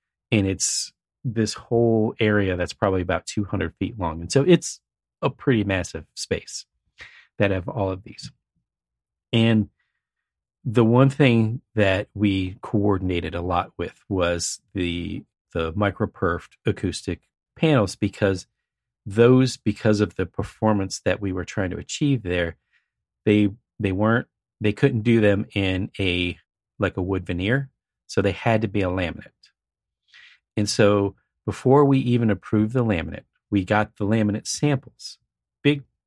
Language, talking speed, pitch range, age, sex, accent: English, 145 wpm, 95-115 Hz, 40-59, male, American